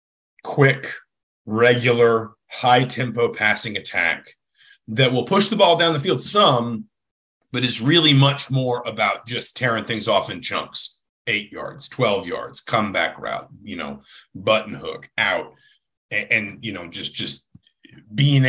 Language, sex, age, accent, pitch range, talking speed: English, male, 40-59, American, 105-135 Hz, 145 wpm